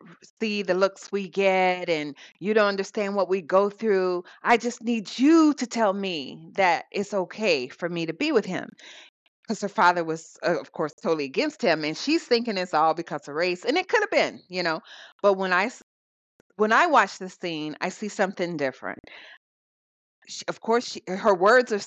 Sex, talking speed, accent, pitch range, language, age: female, 200 wpm, American, 165-220 Hz, English, 30-49